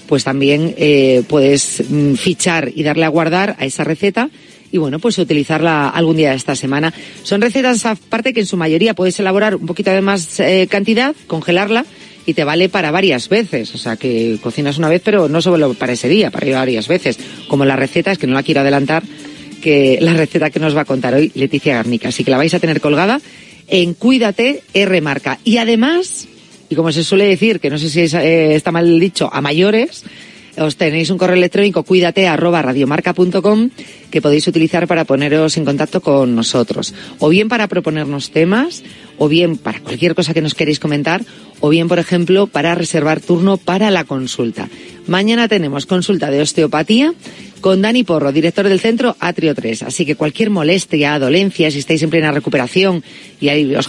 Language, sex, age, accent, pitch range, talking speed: Spanish, female, 40-59, Spanish, 150-190 Hz, 195 wpm